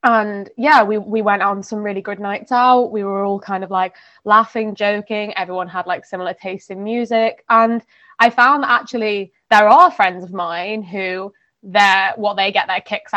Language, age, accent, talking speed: English, 20-39, British, 190 wpm